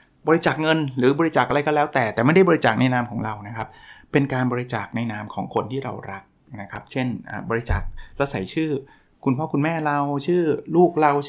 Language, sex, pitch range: Thai, male, 115-145 Hz